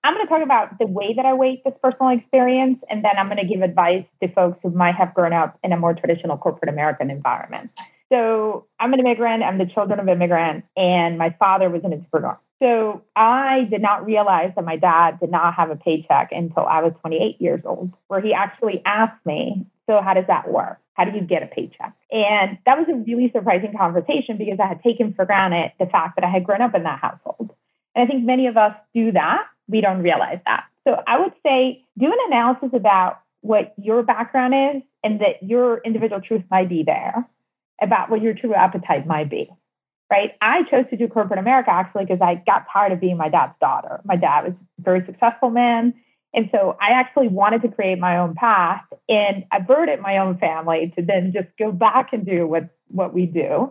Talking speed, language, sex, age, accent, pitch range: 220 wpm, English, female, 30-49, American, 180-240 Hz